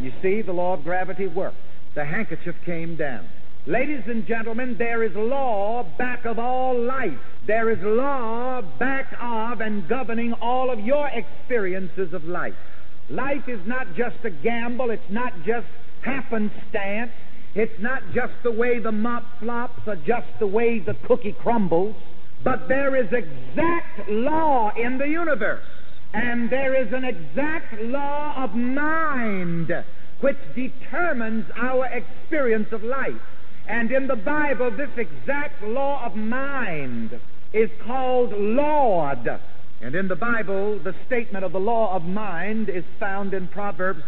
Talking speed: 145 wpm